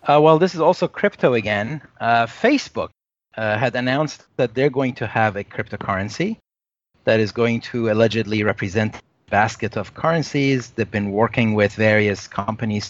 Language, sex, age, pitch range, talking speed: English, male, 30-49, 100-120 Hz, 165 wpm